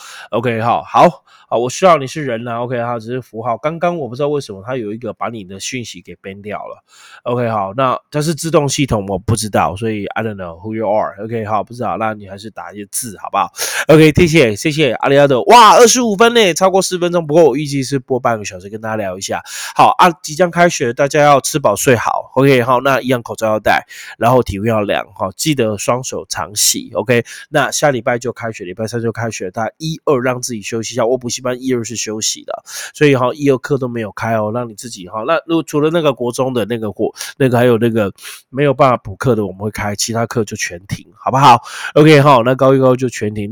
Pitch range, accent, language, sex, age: 110-140 Hz, native, Chinese, male, 20-39